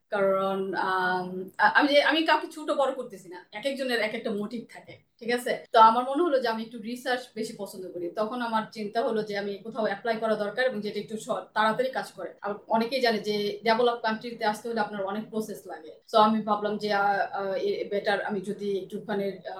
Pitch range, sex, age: 200-240 Hz, female, 30-49